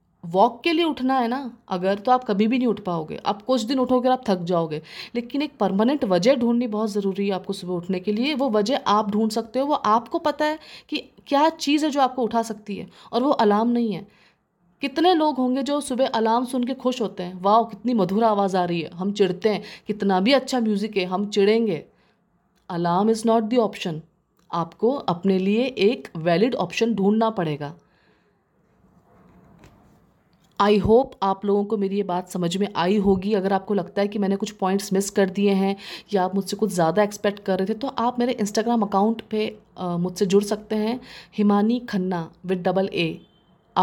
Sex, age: female, 20-39